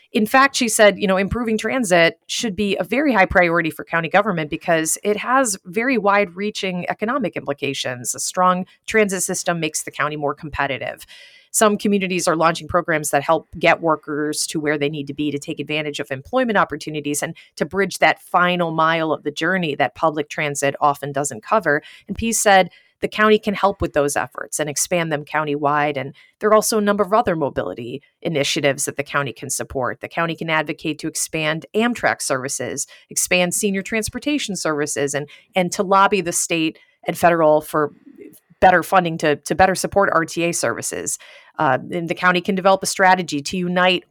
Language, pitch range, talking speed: English, 150-205 Hz, 185 wpm